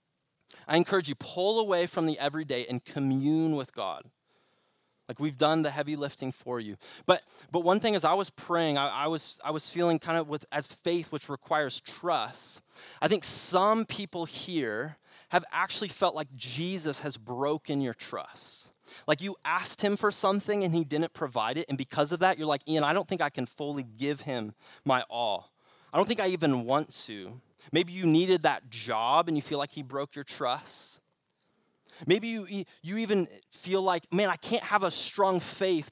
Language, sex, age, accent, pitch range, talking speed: English, male, 20-39, American, 140-180 Hz, 195 wpm